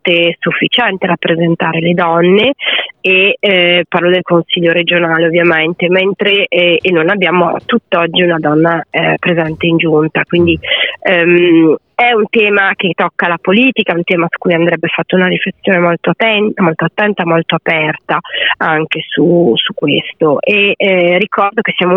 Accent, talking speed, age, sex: native, 150 wpm, 30-49, female